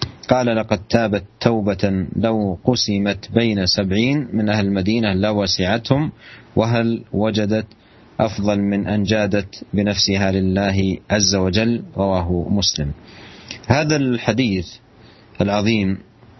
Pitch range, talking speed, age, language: 100-115 Hz, 100 wpm, 40-59, Indonesian